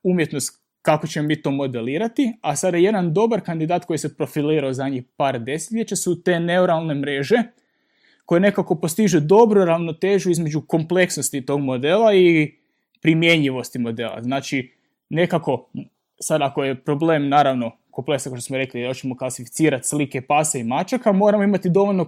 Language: Croatian